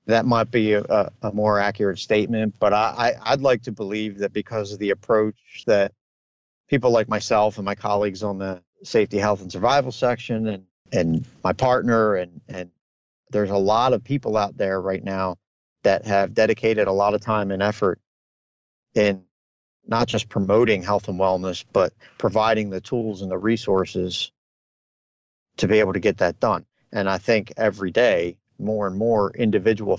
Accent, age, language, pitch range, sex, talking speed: American, 40-59, English, 95-110 Hz, male, 170 wpm